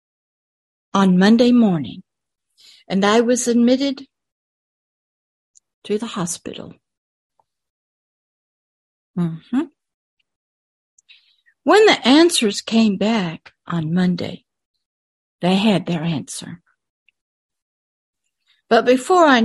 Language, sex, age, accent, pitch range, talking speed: English, female, 60-79, American, 185-250 Hz, 80 wpm